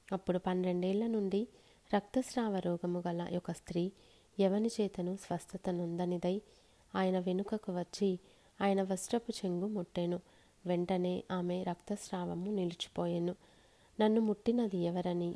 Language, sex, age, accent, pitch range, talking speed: Telugu, female, 30-49, native, 175-205 Hz, 100 wpm